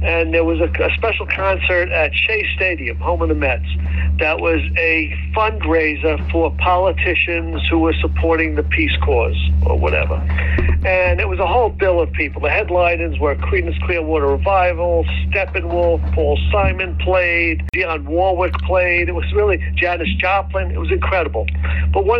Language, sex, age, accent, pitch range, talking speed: English, male, 60-79, American, 75-80 Hz, 160 wpm